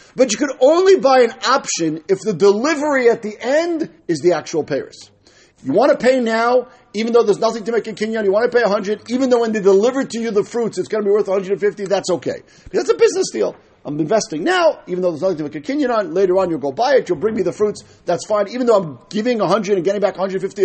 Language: English